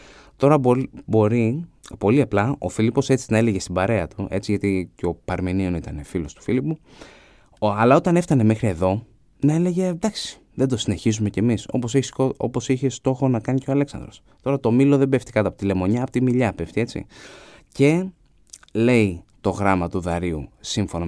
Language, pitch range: Greek, 95-135 Hz